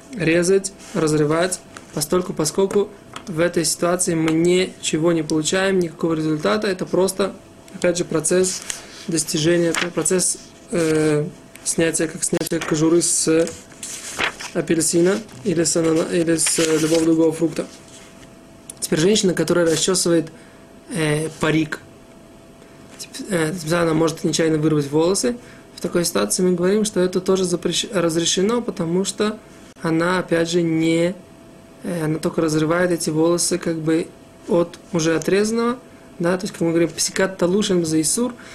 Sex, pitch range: male, 160-185 Hz